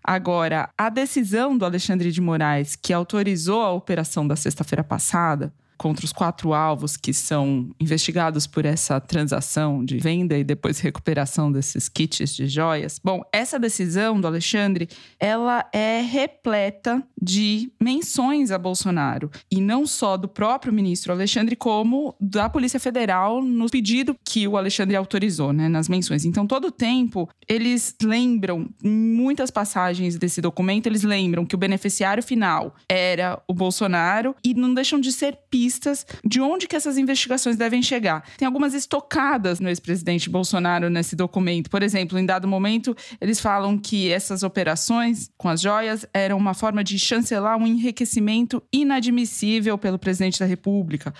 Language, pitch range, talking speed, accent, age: Portuguese, 180-235 Hz, 155 wpm, Brazilian, 20-39